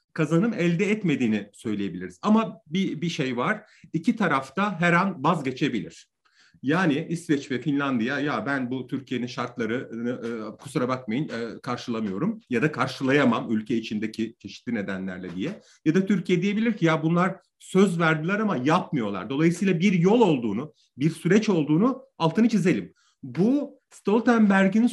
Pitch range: 130-200 Hz